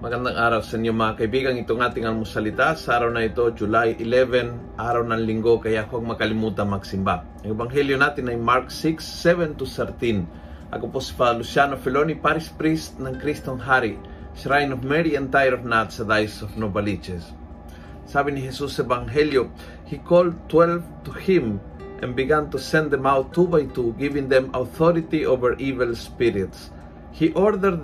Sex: male